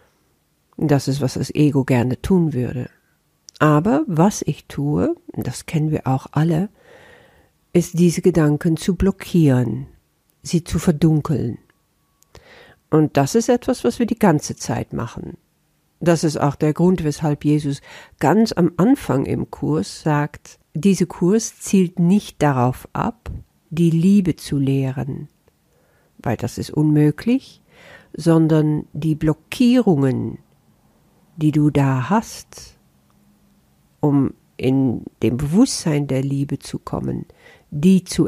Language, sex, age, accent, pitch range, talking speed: German, female, 50-69, German, 140-180 Hz, 125 wpm